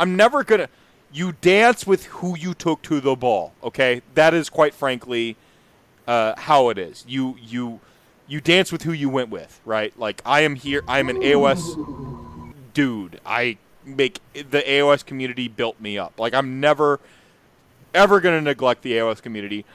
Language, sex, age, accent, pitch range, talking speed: English, male, 30-49, American, 115-150 Hz, 170 wpm